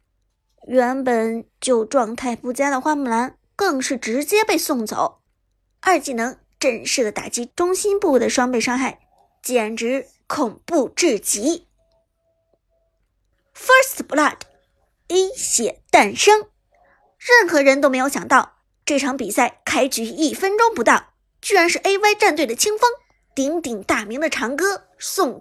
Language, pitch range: Chinese, 245-350 Hz